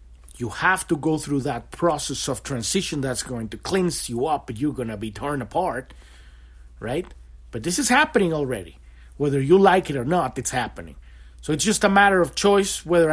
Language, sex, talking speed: English, male, 200 wpm